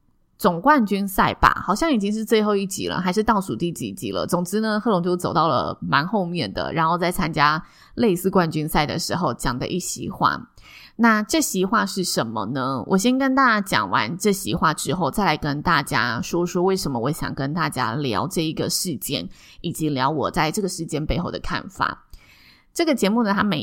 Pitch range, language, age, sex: 160-220 Hz, Chinese, 20-39, female